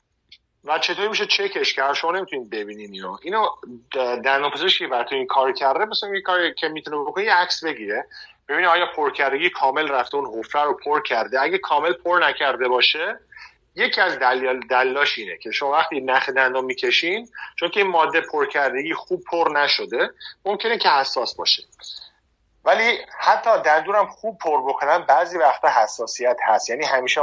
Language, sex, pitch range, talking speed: Persian, male, 130-180 Hz, 165 wpm